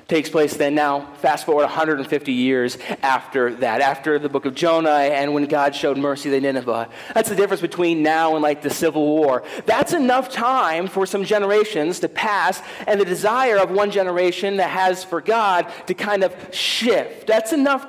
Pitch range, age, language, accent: 160-195 Hz, 30-49, English, American